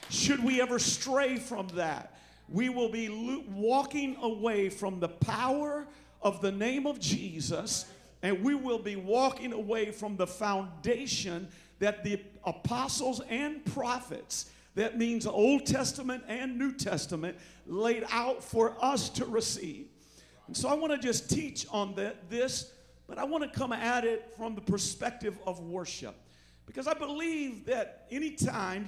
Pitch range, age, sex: 200-260 Hz, 50-69, male